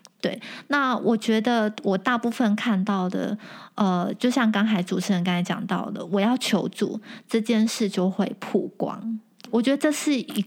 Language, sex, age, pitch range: Chinese, female, 20-39, 195-230 Hz